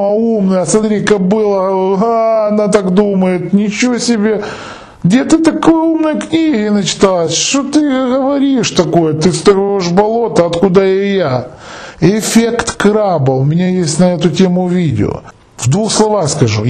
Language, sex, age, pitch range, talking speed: Russian, male, 20-39, 155-200 Hz, 135 wpm